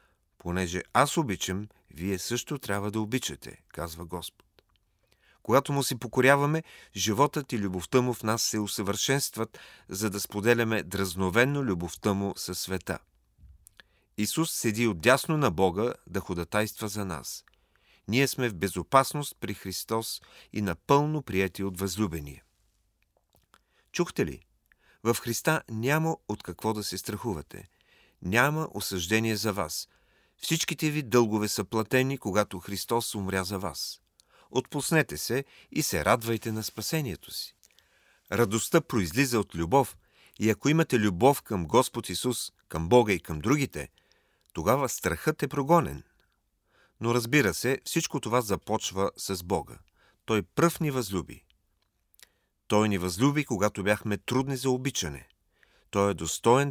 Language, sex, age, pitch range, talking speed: Bulgarian, male, 40-59, 95-130 Hz, 130 wpm